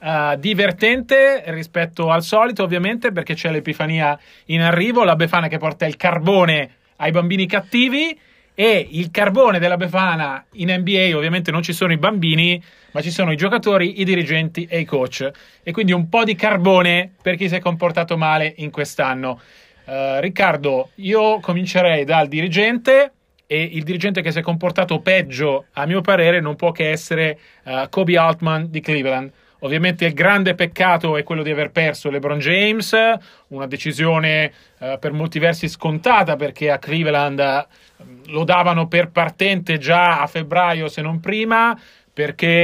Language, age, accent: Italian, 30-49, native